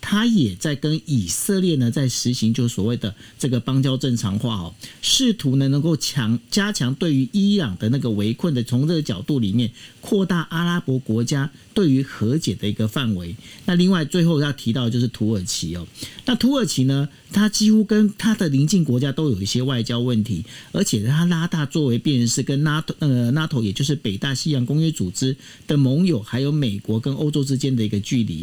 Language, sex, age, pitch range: Chinese, male, 50-69, 120-180 Hz